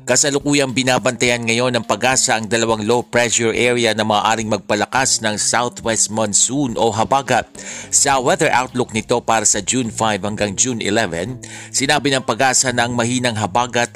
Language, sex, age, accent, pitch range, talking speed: Filipino, male, 50-69, native, 110-125 Hz, 155 wpm